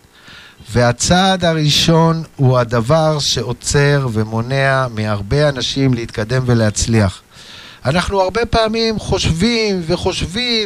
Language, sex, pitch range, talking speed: Hebrew, male, 120-190 Hz, 85 wpm